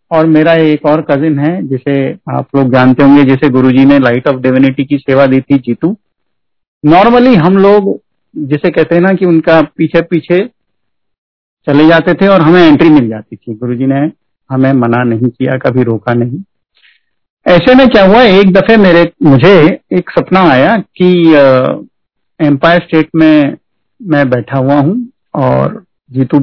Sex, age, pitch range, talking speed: male, 50-69, 140-175 Hz, 165 wpm